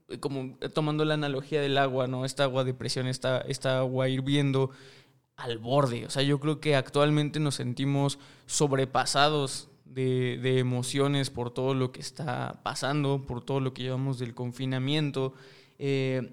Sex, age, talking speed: male, 20-39, 160 wpm